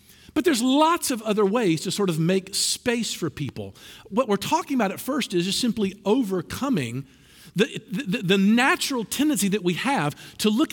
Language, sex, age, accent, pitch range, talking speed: English, male, 50-69, American, 155-255 Hz, 185 wpm